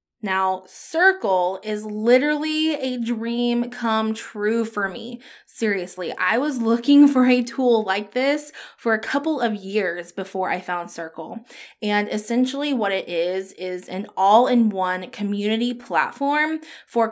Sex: female